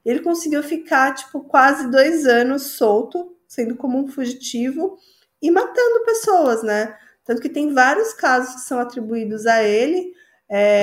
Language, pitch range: Portuguese, 215-270 Hz